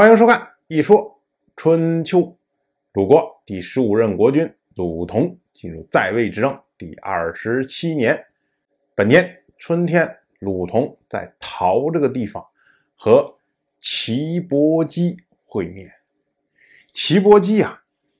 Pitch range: 100-170 Hz